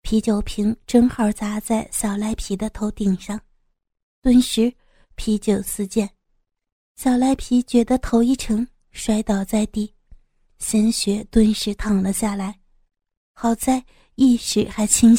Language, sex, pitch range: Chinese, female, 205-240 Hz